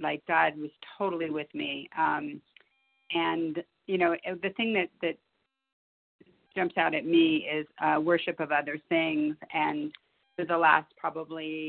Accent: American